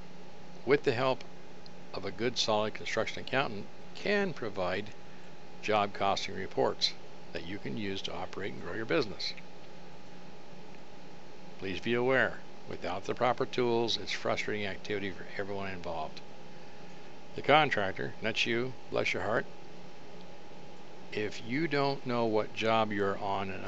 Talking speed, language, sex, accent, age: 135 wpm, English, male, American, 60-79